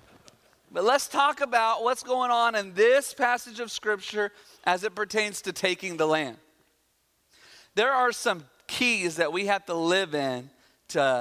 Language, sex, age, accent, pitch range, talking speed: English, male, 40-59, American, 165-225 Hz, 160 wpm